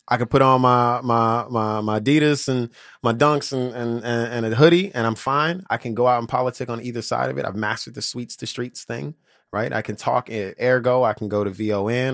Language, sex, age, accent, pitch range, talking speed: English, male, 20-39, American, 105-125 Hz, 245 wpm